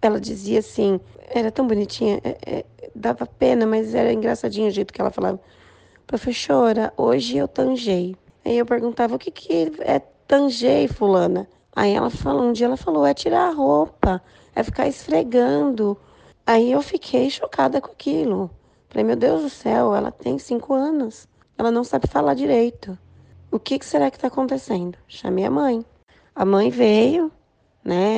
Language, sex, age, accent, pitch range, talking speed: Portuguese, female, 20-39, Brazilian, 180-235 Hz, 165 wpm